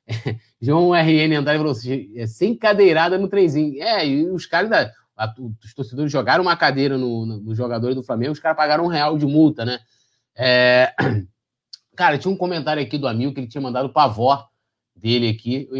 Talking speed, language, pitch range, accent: 195 wpm, Portuguese, 115-155 Hz, Brazilian